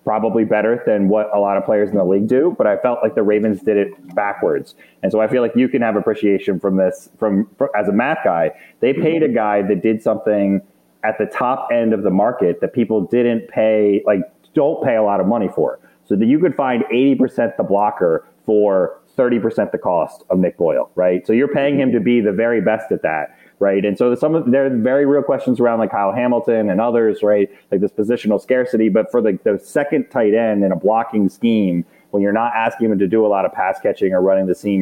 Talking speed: 240 wpm